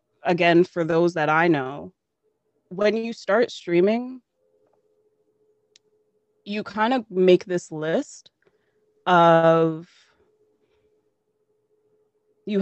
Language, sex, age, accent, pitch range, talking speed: Danish, female, 20-39, American, 170-275 Hz, 85 wpm